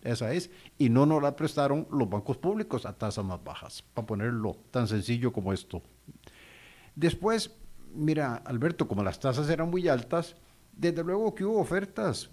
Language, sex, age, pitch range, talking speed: Spanish, male, 50-69, 110-145 Hz, 165 wpm